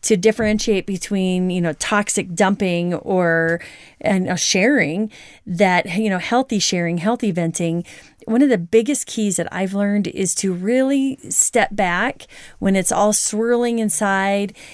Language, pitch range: English, 185-230 Hz